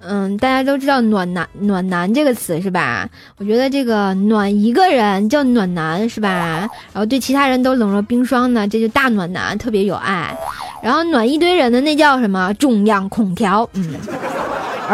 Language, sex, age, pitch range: Chinese, female, 20-39, 195-255 Hz